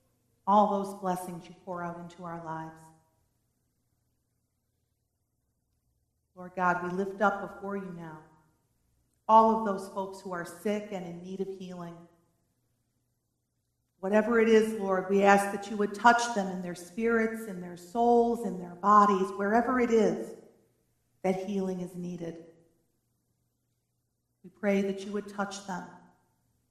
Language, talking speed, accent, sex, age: English, 140 wpm, American, female, 40-59